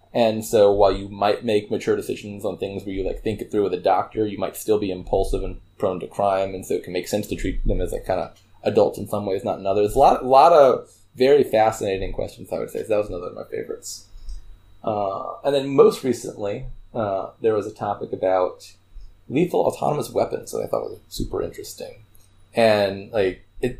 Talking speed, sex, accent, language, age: 225 wpm, male, American, English, 20-39